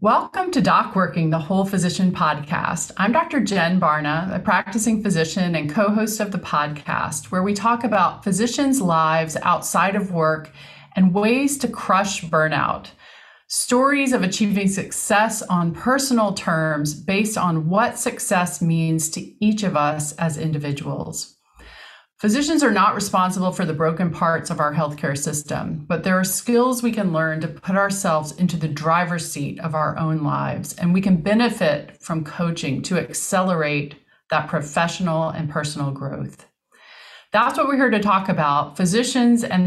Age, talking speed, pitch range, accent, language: 40-59, 155 wpm, 160-210 Hz, American, English